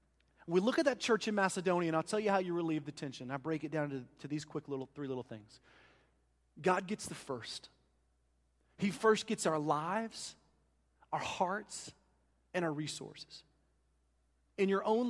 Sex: male